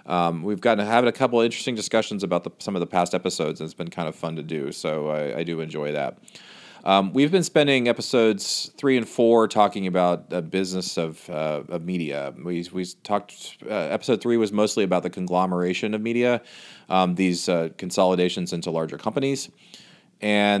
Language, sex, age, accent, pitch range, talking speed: English, male, 30-49, American, 90-115 Hz, 195 wpm